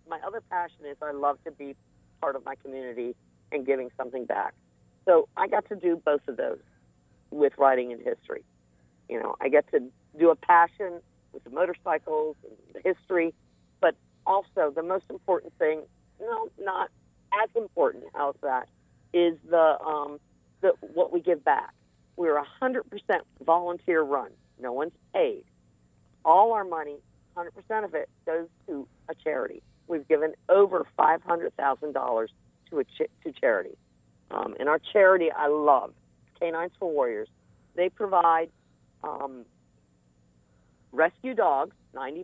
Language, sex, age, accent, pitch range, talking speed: English, female, 50-69, American, 130-195 Hz, 150 wpm